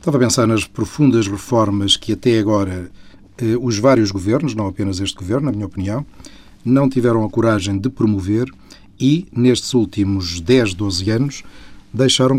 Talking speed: 160 wpm